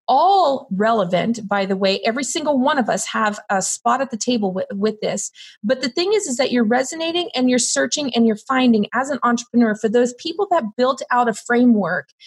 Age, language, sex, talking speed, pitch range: 30-49, English, female, 215 wpm, 220-275 Hz